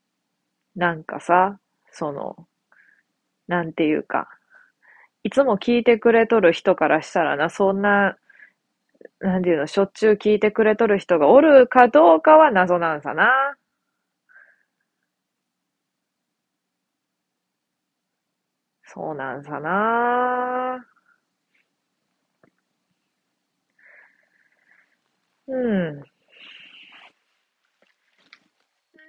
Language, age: Japanese, 20-39